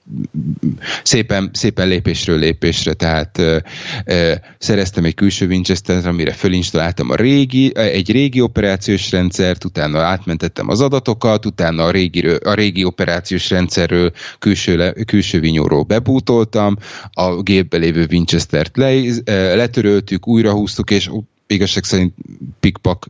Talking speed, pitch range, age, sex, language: 120 wpm, 85-100 Hz, 30-49, male, Hungarian